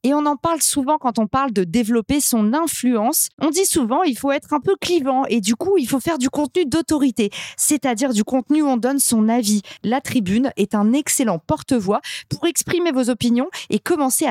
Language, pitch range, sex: French, 220-290 Hz, female